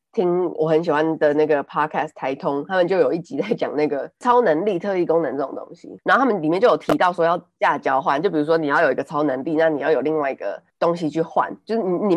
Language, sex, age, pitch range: Chinese, female, 20-39, 155-215 Hz